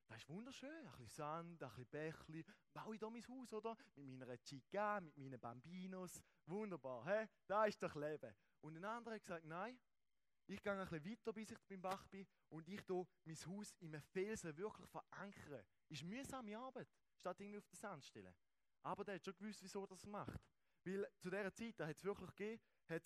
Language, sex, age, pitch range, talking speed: English, male, 20-39, 145-195 Hz, 215 wpm